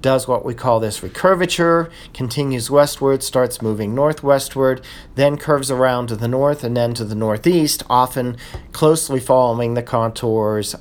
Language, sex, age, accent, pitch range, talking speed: English, male, 40-59, American, 115-145 Hz, 150 wpm